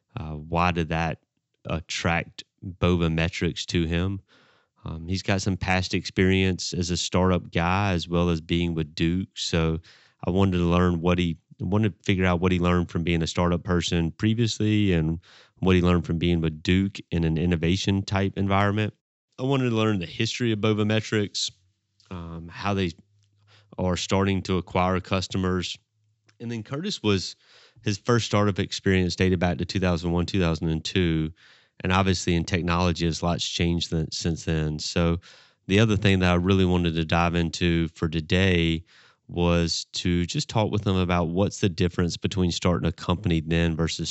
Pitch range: 85-100 Hz